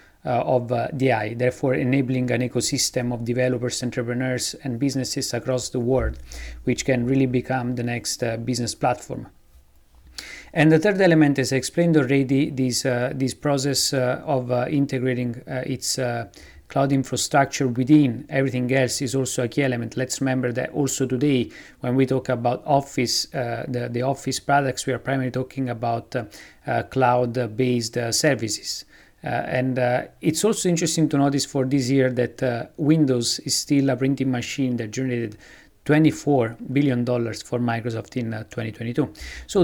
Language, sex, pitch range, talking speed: English, male, 120-140 Hz, 165 wpm